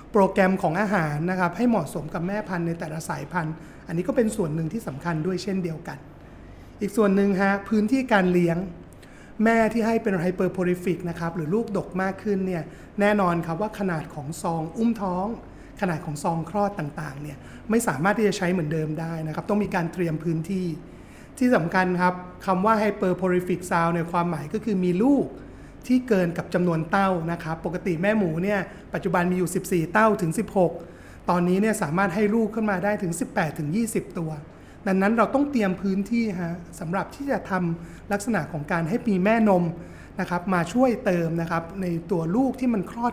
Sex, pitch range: male, 170-205 Hz